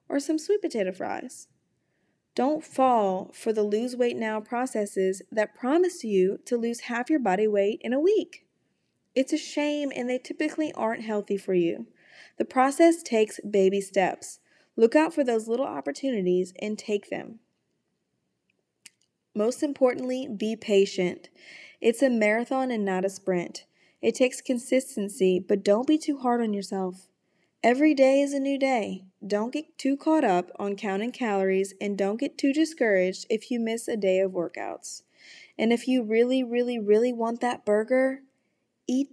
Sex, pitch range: female, 200-260 Hz